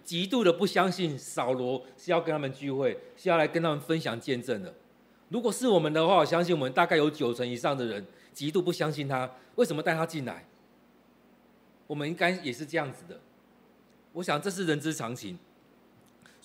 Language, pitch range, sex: Chinese, 125-175 Hz, male